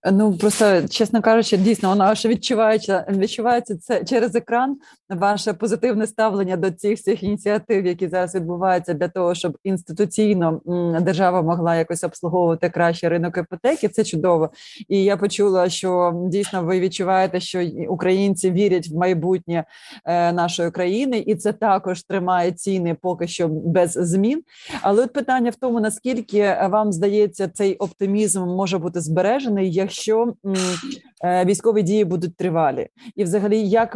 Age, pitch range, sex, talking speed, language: 30-49, 175-215 Hz, female, 145 wpm, Ukrainian